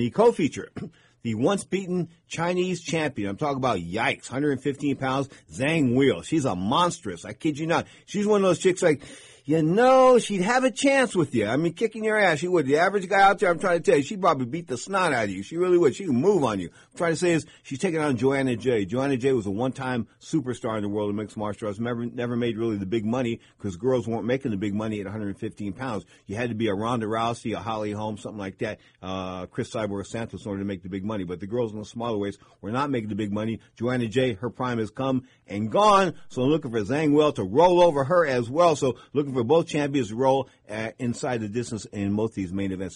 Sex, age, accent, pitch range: male, 50-69, American, 110-160 Hz